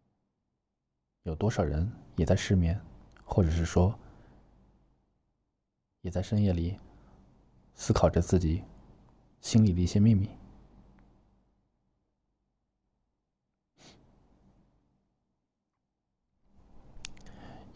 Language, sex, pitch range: Chinese, male, 90-115 Hz